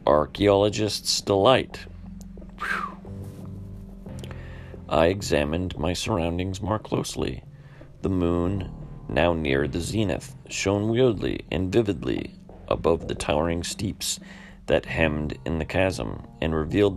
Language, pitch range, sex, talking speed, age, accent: English, 80-100 Hz, male, 105 wpm, 40-59, American